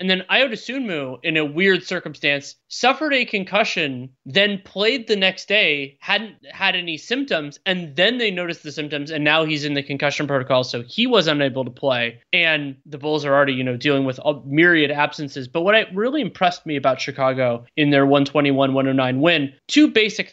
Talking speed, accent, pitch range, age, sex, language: 190 wpm, American, 145-190 Hz, 20-39, male, English